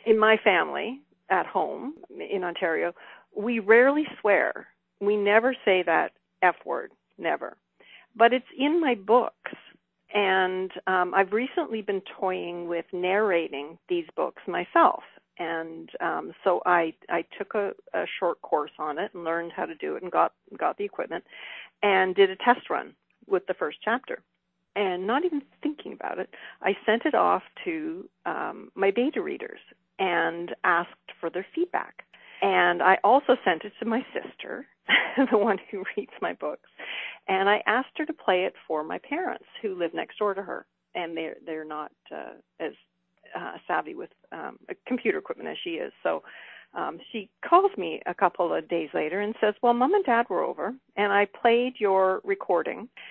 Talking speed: 175 wpm